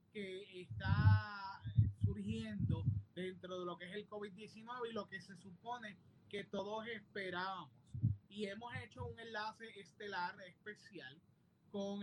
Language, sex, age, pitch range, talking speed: Spanish, male, 20-39, 165-215 Hz, 130 wpm